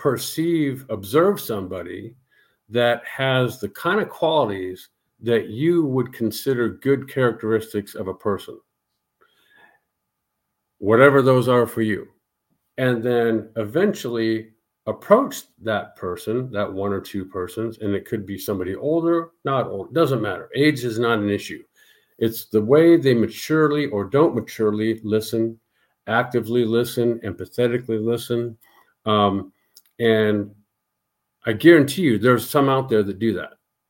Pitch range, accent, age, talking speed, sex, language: 110-135 Hz, American, 50-69, 130 wpm, male, English